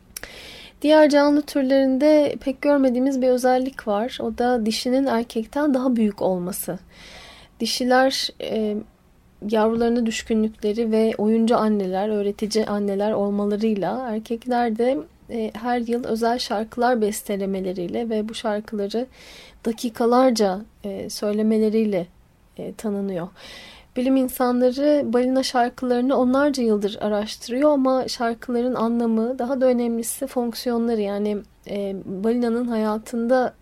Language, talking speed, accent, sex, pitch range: Turkish, 105 wpm, native, female, 210-245 Hz